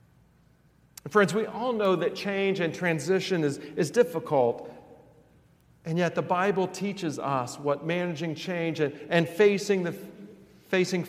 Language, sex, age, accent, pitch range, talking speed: English, male, 50-69, American, 150-195 Hz, 135 wpm